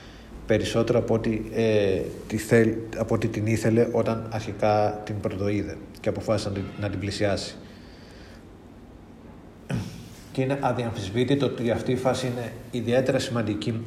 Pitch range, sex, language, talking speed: 100-120 Hz, male, Greek, 125 wpm